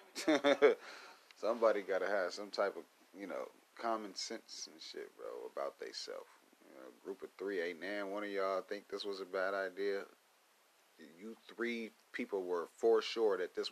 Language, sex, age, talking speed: English, male, 30-49, 180 wpm